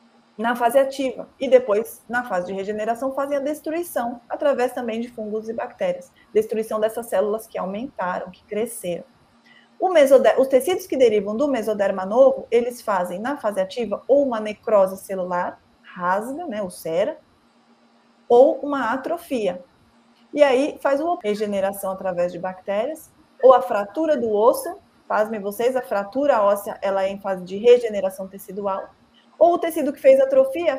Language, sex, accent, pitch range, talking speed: Portuguese, female, Brazilian, 205-270 Hz, 160 wpm